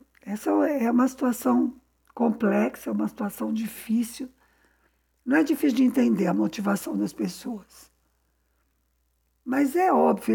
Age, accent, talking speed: 60-79, Brazilian, 120 wpm